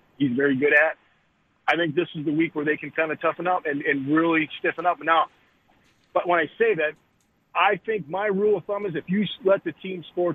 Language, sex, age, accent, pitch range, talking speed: English, male, 40-59, American, 140-170 Hz, 240 wpm